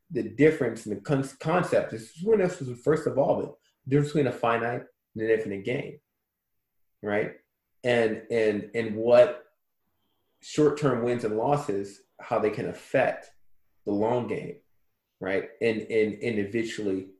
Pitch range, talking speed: 110-145 Hz, 145 wpm